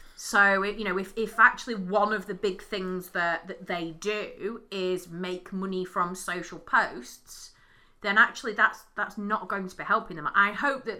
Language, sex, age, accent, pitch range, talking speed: English, female, 30-49, British, 175-215 Hz, 185 wpm